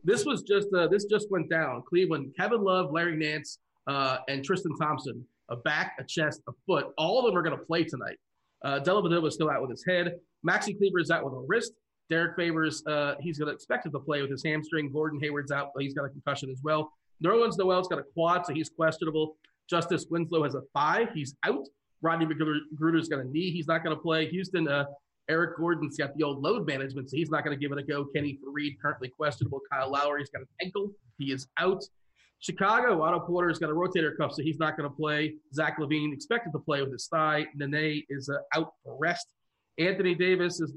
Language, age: English, 30-49